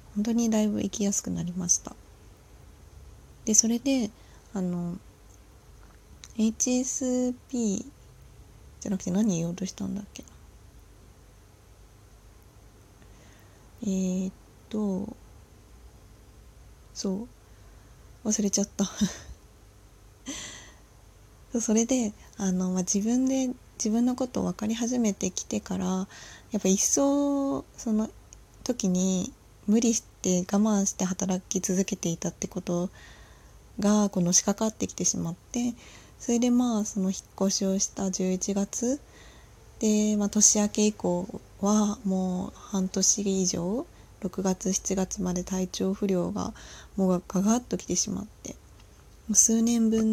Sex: female